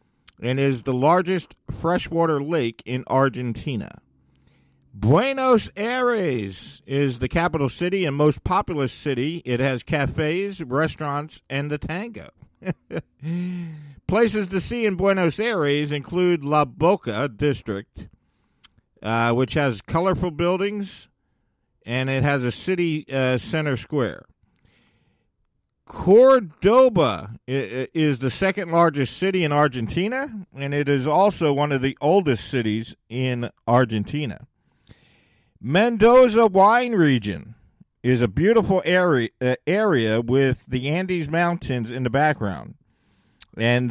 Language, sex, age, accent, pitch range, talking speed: English, male, 50-69, American, 125-175 Hz, 115 wpm